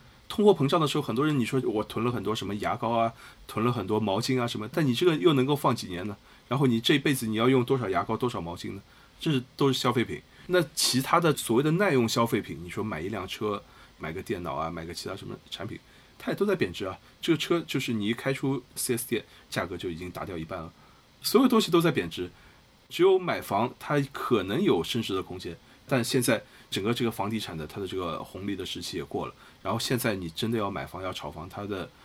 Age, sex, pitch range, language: 20-39, male, 100-135 Hz, Chinese